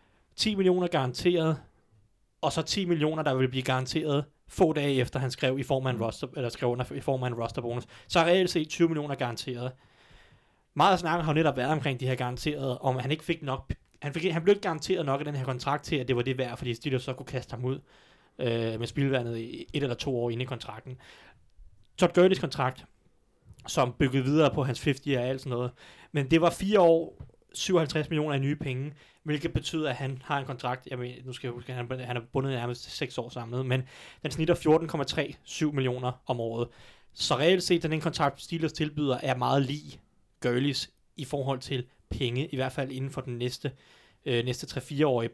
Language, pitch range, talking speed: Danish, 125-155 Hz, 220 wpm